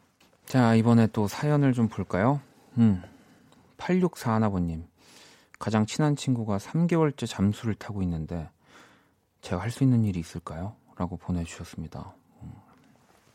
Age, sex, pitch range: 40-59, male, 90-130 Hz